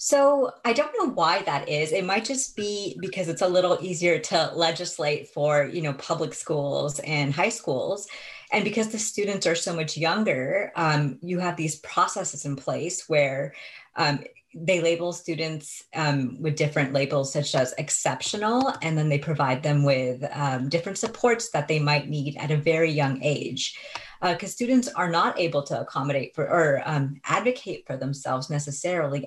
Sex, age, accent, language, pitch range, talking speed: female, 30-49, American, English, 145-180 Hz, 175 wpm